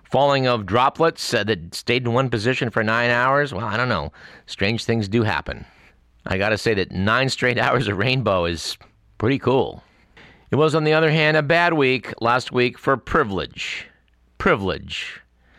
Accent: American